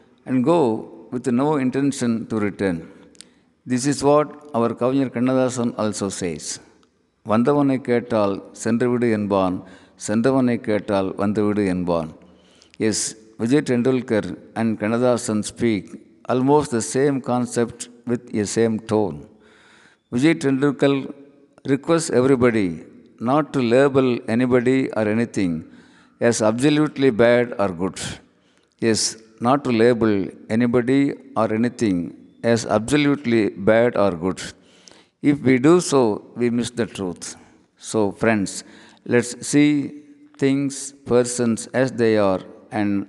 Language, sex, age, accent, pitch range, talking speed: Tamil, male, 50-69, native, 105-130 Hz, 120 wpm